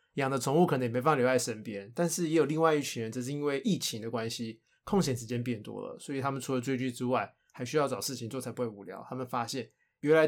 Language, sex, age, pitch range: Chinese, male, 20-39, 115-140 Hz